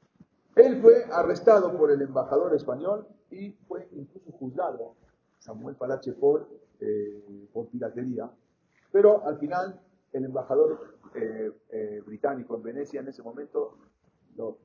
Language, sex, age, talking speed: English, male, 50-69, 125 wpm